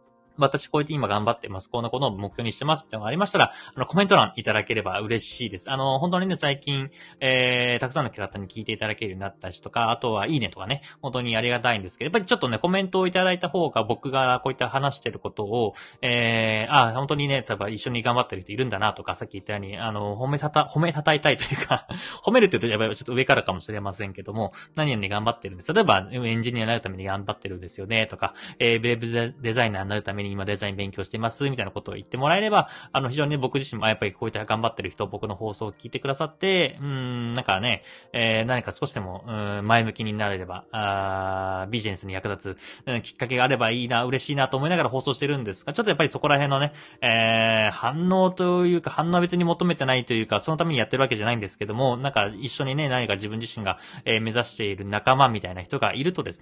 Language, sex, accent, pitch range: Japanese, male, native, 105-140 Hz